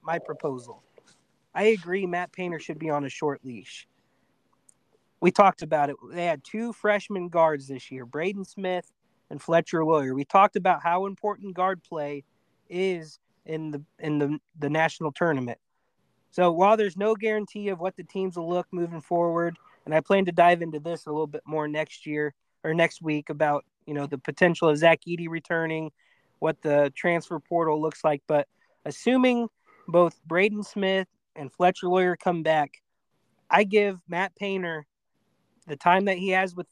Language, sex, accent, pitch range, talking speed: English, male, American, 155-185 Hz, 175 wpm